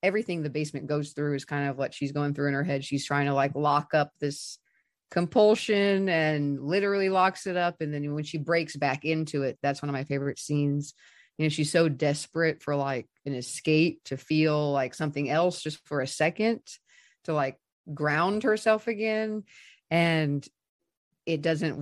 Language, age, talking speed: English, 30-49, 185 wpm